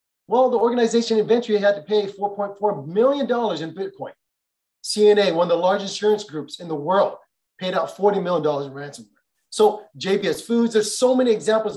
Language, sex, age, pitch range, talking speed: English, male, 30-49, 185-240 Hz, 175 wpm